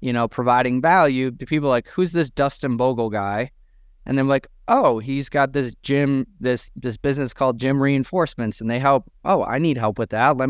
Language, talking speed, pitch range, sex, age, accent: English, 205 wpm, 120-145 Hz, male, 20-39, American